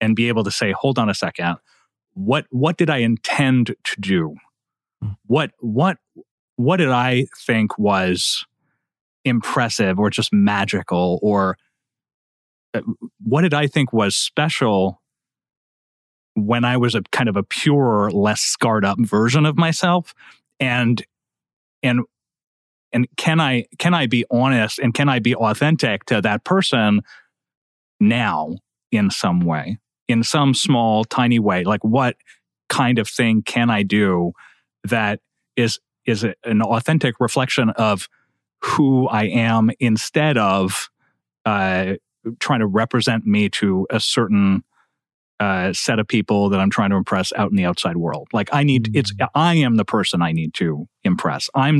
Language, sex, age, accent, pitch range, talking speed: English, male, 30-49, American, 100-130 Hz, 150 wpm